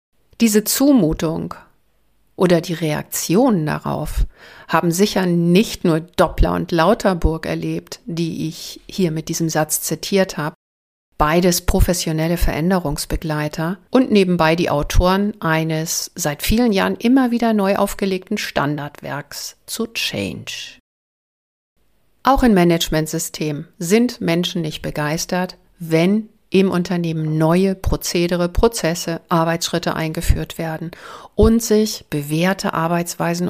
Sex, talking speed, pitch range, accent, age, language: female, 105 wpm, 160-210 Hz, German, 60-79, German